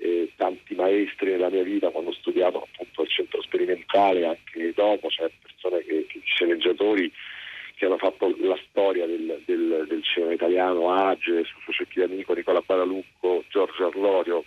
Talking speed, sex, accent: 160 wpm, male, native